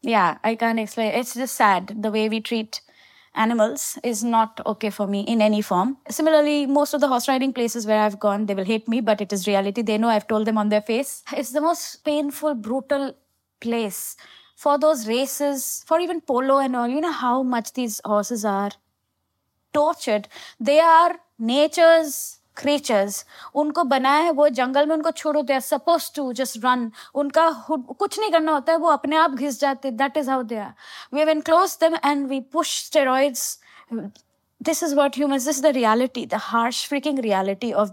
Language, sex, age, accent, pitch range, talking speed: English, female, 20-39, Indian, 225-300 Hz, 175 wpm